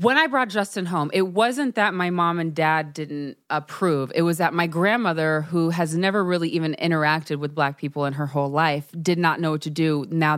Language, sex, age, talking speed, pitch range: English, female, 20-39, 225 wpm, 155-180 Hz